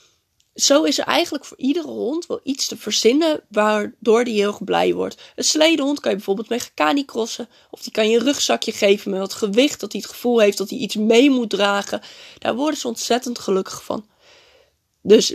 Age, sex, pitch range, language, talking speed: 20-39, female, 210-315 Hz, Dutch, 205 wpm